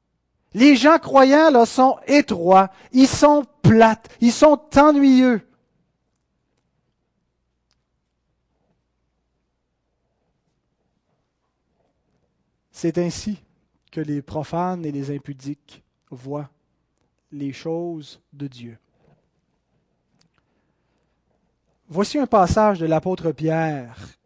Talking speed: 75 wpm